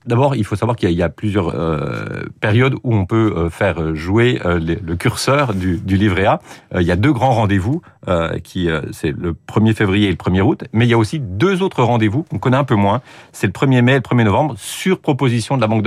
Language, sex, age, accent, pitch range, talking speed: French, male, 40-59, French, 95-125 Hz, 260 wpm